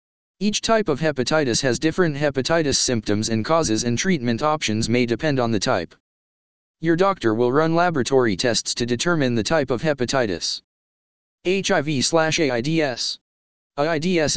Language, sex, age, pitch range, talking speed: English, male, 20-39, 120-165 Hz, 140 wpm